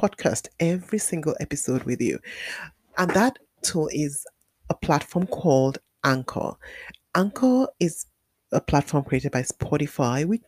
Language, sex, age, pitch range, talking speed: English, female, 30-49, 135-200 Hz, 125 wpm